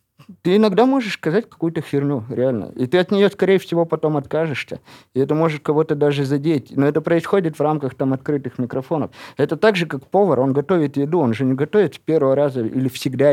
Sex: male